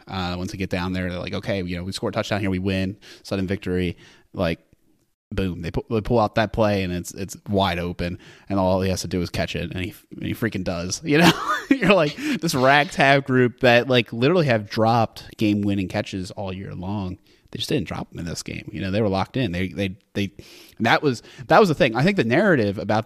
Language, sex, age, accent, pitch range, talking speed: English, male, 20-39, American, 100-120 Hz, 245 wpm